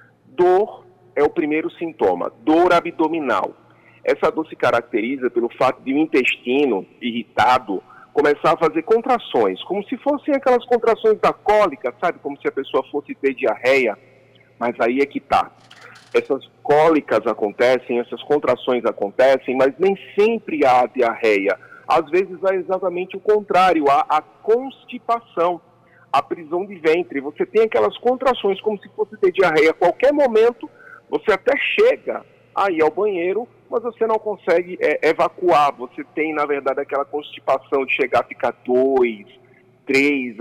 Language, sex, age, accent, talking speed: Portuguese, male, 40-59, Brazilian, 150 wpm